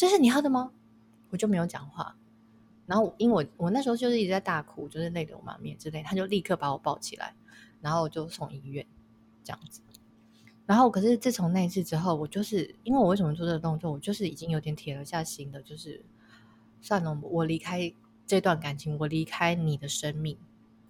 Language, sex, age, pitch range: Chinese, female, 20-39, 145-190 Hz